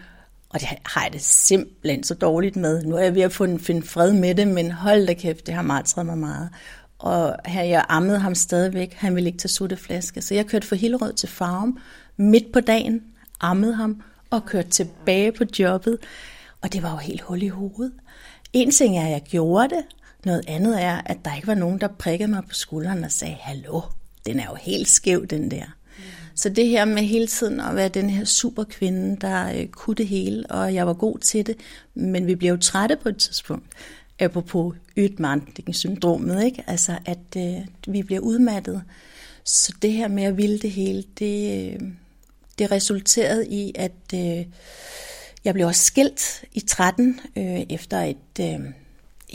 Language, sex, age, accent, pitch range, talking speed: Danish, female, 60-79, native, 175-215 Hz, 195 wpm